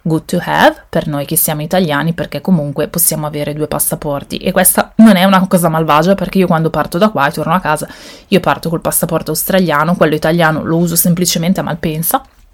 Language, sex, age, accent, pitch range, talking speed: Italian, female, 20-39, native, 150-180 Hz, 205 wpm